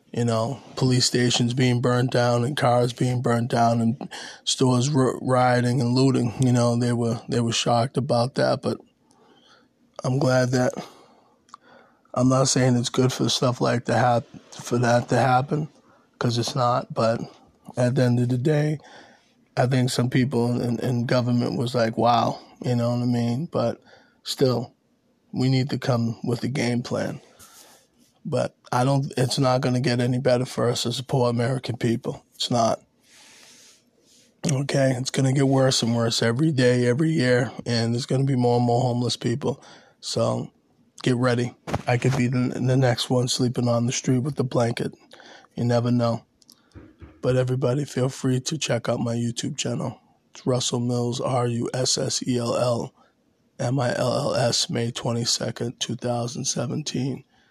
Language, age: English, 20-39